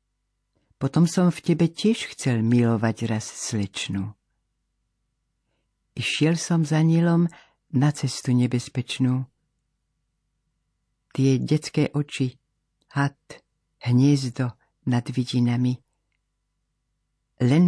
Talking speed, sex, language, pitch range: 80 wpm, female, Slovak, 115-145 Hz